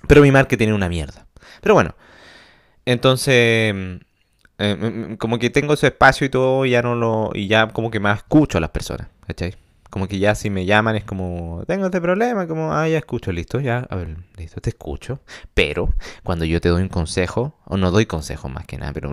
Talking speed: 215 wpm